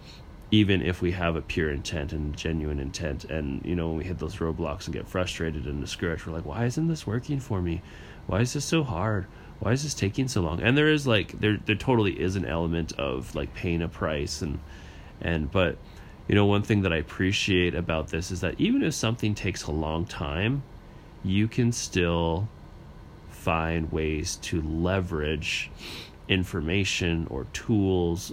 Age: 30-49